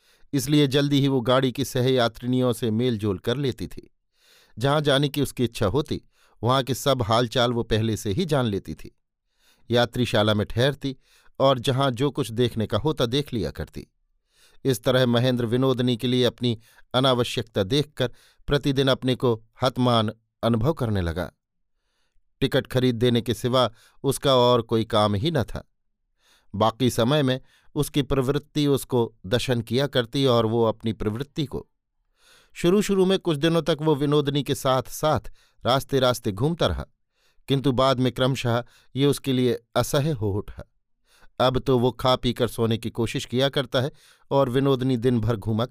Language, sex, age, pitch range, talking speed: Hindi, male, 50-69, 115-140 Hz, 165 wpm